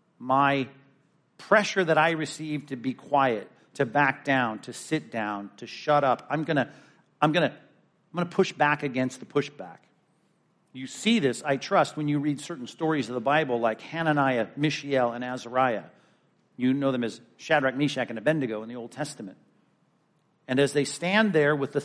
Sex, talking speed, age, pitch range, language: male, 185 wpm, 50-69, 135-170 Hz, English